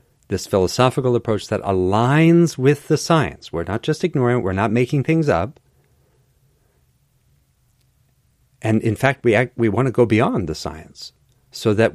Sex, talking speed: male, 160 wpm